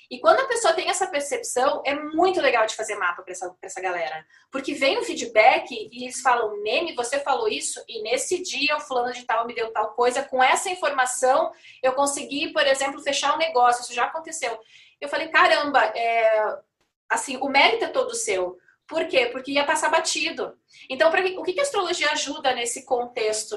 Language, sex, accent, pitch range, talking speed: Portuguese, female, Brazilian, 245-340 Hz, 200 wpm